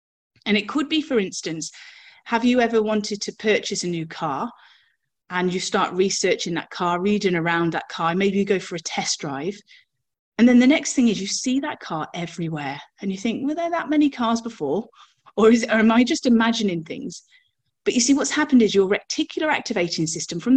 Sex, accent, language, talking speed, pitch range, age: female, British, English, 205 wpm, 190-260 Hz, 30-49